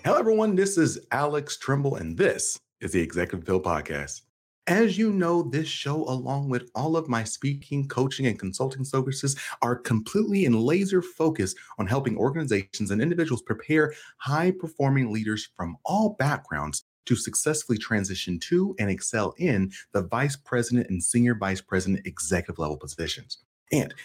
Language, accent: English, American